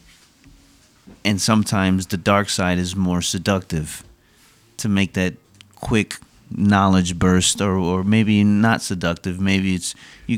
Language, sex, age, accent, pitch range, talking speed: English, male, 30-49, American, 85-105 Hz, 125 wpm